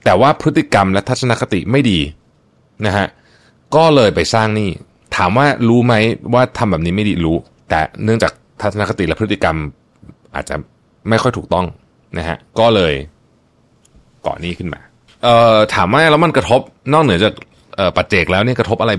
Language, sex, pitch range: Thai, male, 85-120 Hz